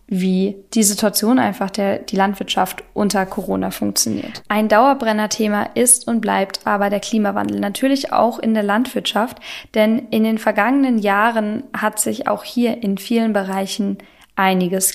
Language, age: German, 10-29